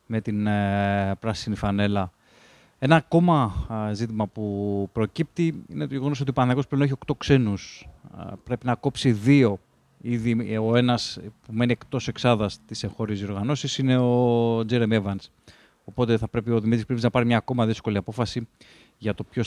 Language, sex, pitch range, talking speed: Greek, male, 105-125 Hz, 170 wpm